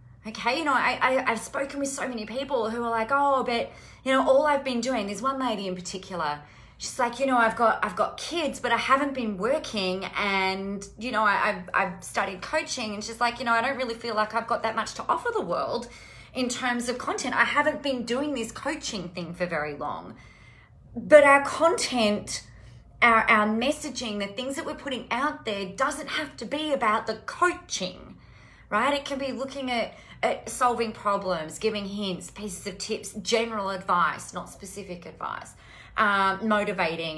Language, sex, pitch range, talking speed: English, female, 195-265 Hz, 195 wpm